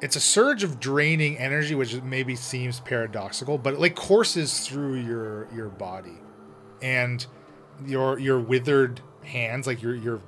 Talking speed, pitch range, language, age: 150 wpm, 120-140 Hz, English, 30-49